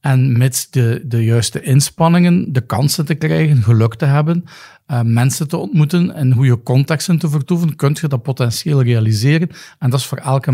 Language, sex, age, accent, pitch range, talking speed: Dutch, male, 50-69, Dutch, 125-150 Hz, 180 wpm